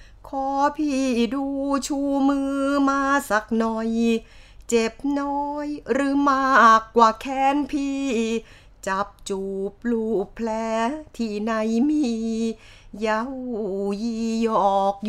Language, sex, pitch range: Thai, female, 220-275 Hz